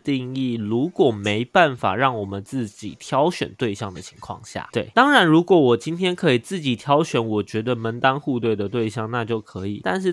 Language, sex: Chinese, male